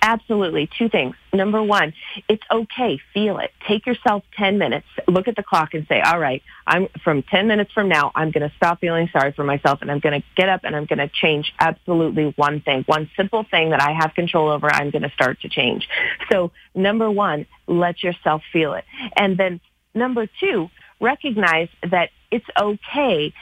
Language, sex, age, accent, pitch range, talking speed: English, female, 40-59, American, 155-200 Hz, 190 wpm